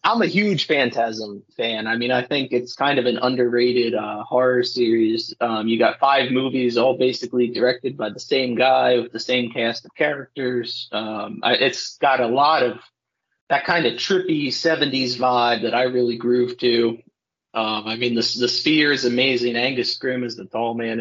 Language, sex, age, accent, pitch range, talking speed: English, male, 30-49, American, 115-135 Hz, 190 wpm